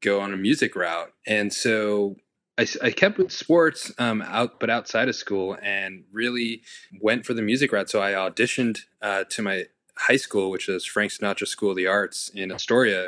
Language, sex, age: English, male, 20-39